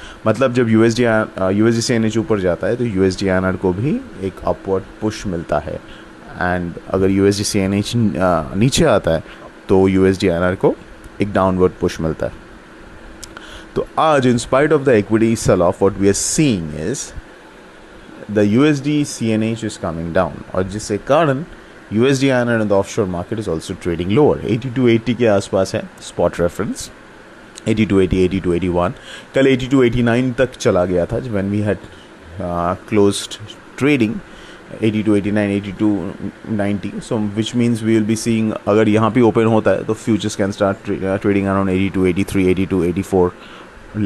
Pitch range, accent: 95-115 Hz, Indian